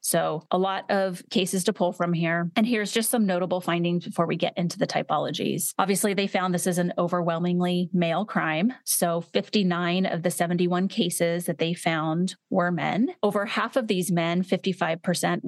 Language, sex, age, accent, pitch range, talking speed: English, female, 30-49, American, 175-205 Hz, 180 wpm